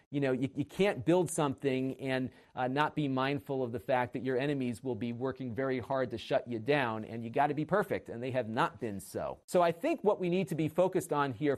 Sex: male